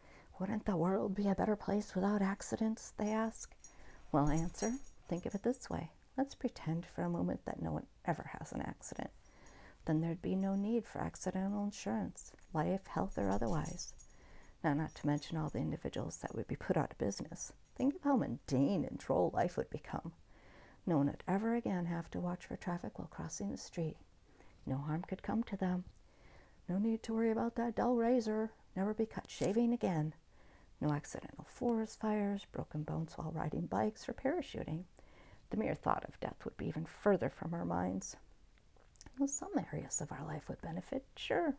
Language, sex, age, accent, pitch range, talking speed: English, female, 50-69, American, 160-225 Hz, 185 wpm